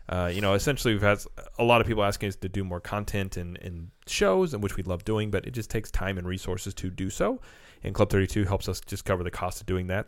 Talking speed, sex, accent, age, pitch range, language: 270 wpm, male, American, 30-49, 90-105 Hz, English